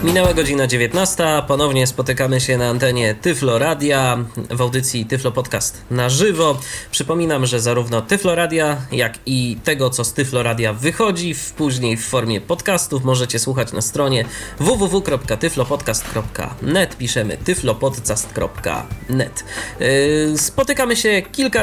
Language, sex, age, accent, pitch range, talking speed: Polish, male, 20-39, native, 125-165 Hz, 110 wpm